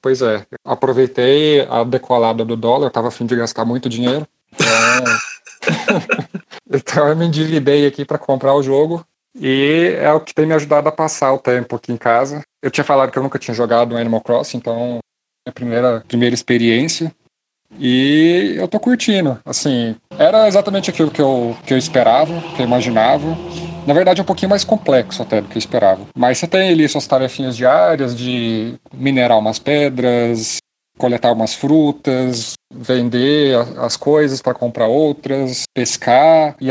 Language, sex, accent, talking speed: Portuguese, male, Brazilian, 170 wpm